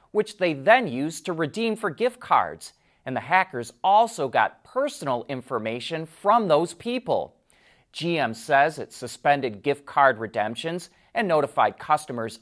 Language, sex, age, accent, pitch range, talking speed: English, male, 30-49, American, 130-210 Hz, 140 wpm